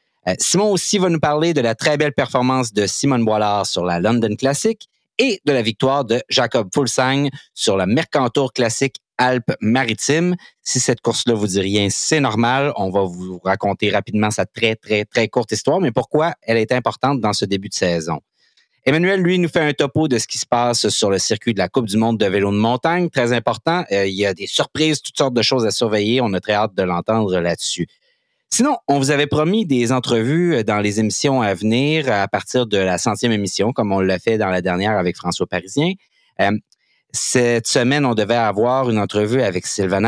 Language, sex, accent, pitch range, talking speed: French, male, Canadian, 105-145 Hz, 210 wpm